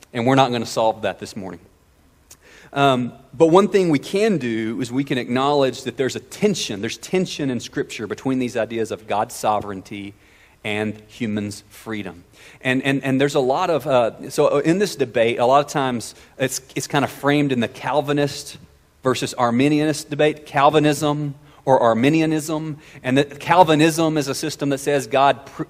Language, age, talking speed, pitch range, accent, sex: English, 40-59, 180 wpm, 115-150 Hz, American, male